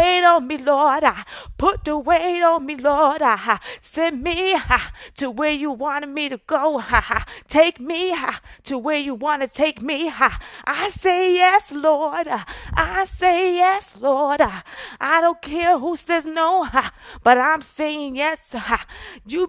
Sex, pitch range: female, 285-335 Hz